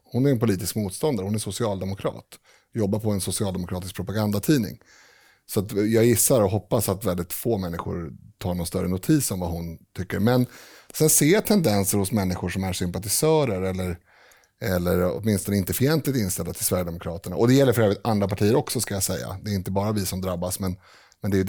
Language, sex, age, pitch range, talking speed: Swedish, male, 30-49, 95-125 Hz, 195 wpm